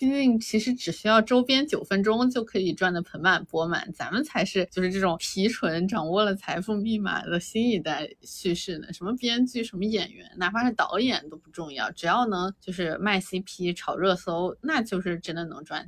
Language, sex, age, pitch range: Chinese, female, 20-39, 175-235 Hz